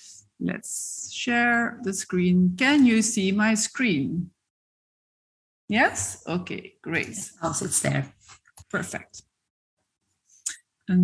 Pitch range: 215-280 Hz